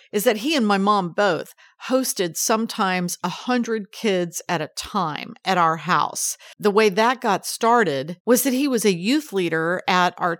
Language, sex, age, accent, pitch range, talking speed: English, female, 50-69, American, 180-245 Hz, 185 wpm